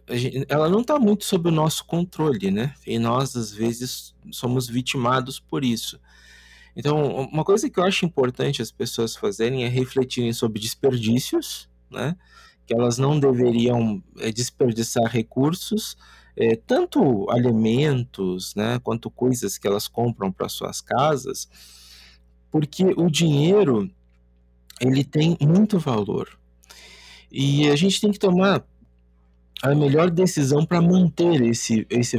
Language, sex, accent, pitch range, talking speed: Portuguese, male, Brazilian, 105-145 Hz, 130 wpm